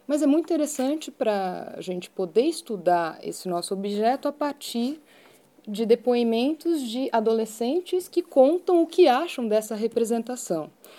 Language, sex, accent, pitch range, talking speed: Portuguese, female, Brazilian, 195-265 Hz, 135 wpm